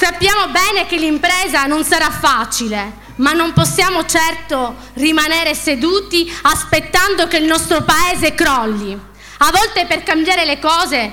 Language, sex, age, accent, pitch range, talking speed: English, female, 20-39, Italian, 290-380 Hz, 135 wpm